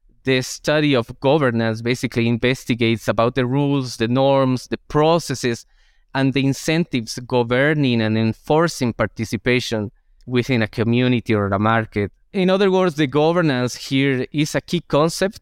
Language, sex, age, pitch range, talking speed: English, male, 20-39, 120-150 Hz, 140 wpm